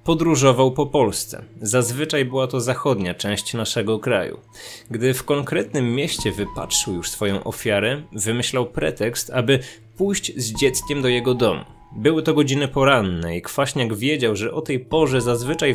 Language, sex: Polish, male